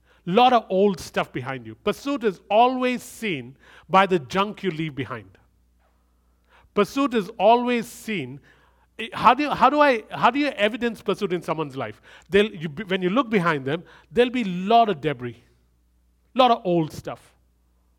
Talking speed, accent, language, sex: 145 wpm, Indian, English, male